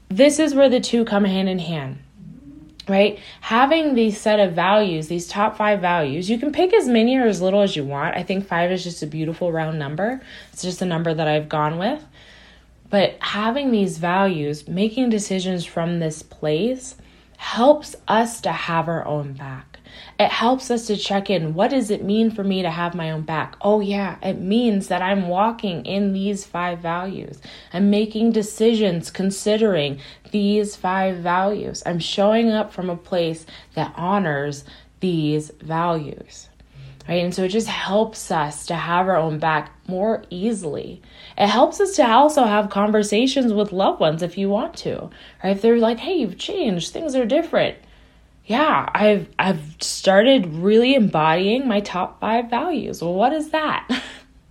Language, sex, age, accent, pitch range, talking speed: English, female, 20-39, American, 175-225 Hz, 175 wpm